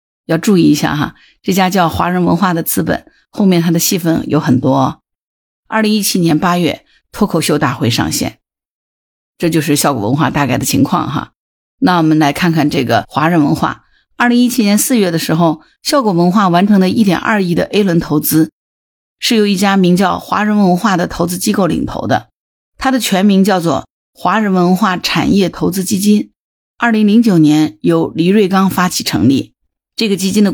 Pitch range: 155-200 Hz